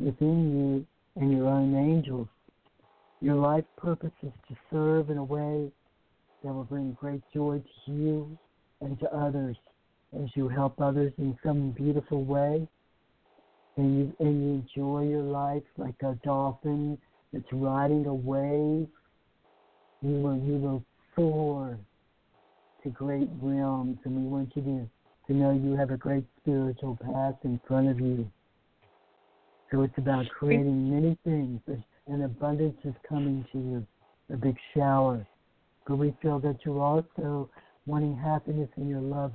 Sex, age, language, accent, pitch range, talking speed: male, 60-79, English, American, 130-145 Hz, 145 wpm